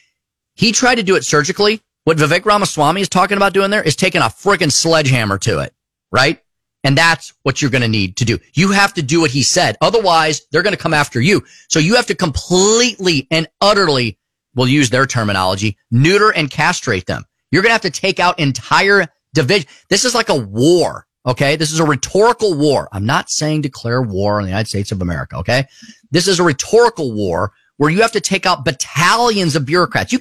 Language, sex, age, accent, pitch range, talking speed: English, male, 30-49, American, 135-200 Hz, 215 wpm